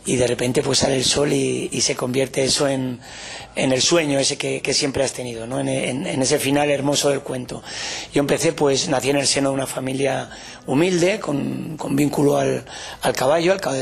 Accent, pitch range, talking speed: Spanish, 135-155 Hz, 215 wpm